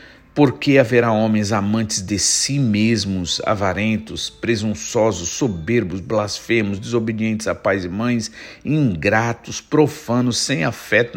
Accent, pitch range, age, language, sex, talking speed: Brazilian, 105-140 Hz, 50-69, Portuguese, male, 115 wpm